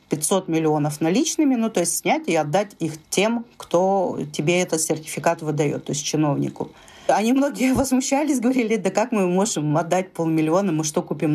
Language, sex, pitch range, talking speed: Russian, female, 155-195 Hz, 170 wpm